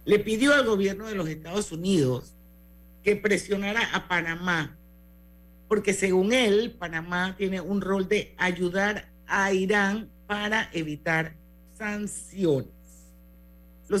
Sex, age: male, 50-69